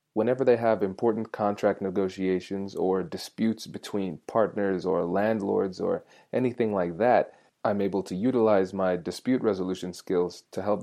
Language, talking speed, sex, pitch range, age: English, 145 wpm, male, 95-110 Hz, 20-39